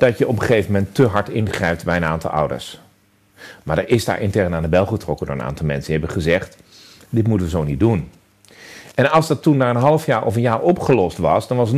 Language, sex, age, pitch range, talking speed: Dutch, male, 40-59, 95-150 Hz, 260 wpm